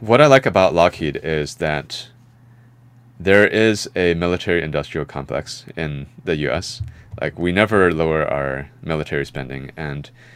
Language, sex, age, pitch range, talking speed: English, male, 30-49, 70-110 Hz, 135 wpm